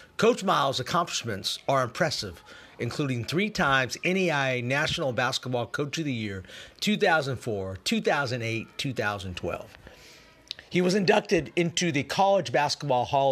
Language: English